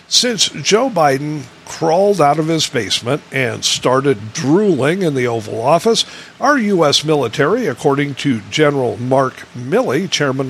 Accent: American